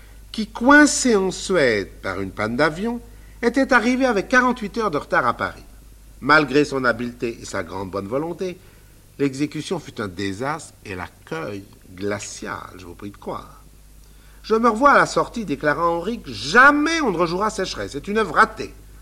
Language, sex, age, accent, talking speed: French, male, 50-69, French, 170 wpm